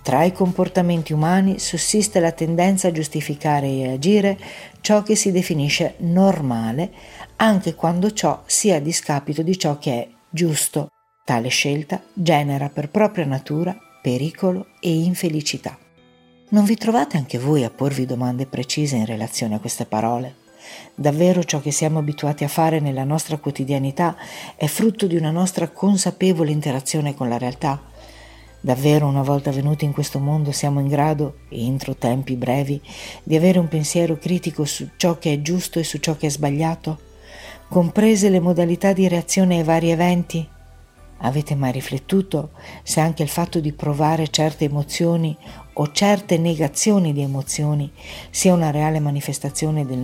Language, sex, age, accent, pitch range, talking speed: Italian, female, 50-69, native, 140-170 Hz, 155 wpm